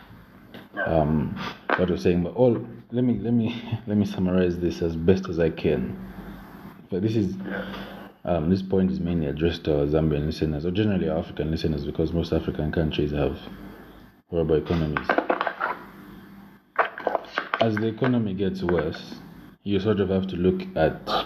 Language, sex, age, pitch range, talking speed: English, male, 30-49, 80-95 Hz, 155 wpm